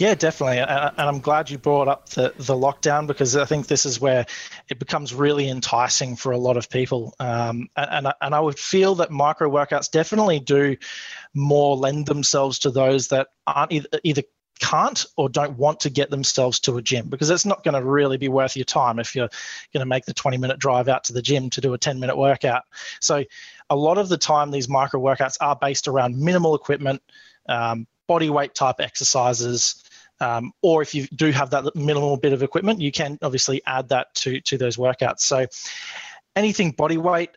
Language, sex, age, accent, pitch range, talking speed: English, male, 20-39, Australian, 130-150 Hz, 210 wpm